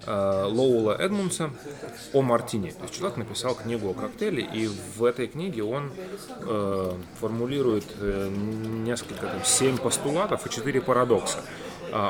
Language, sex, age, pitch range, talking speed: Russian, male, 30-49, 100-125 Hz, 135 wpm